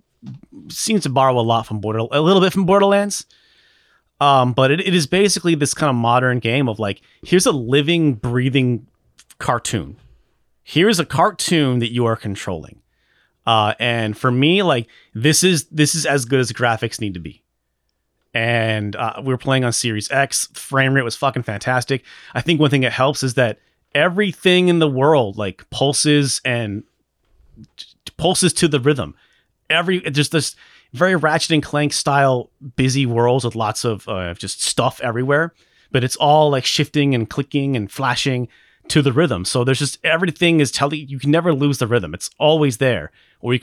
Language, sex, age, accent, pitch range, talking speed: English, male, 30-49, American, 110-150 Hz, 180 wpm